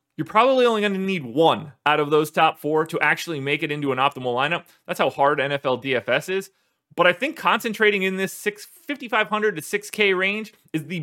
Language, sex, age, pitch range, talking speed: English, male, 30-49, 140-195 Hz, 205 wpm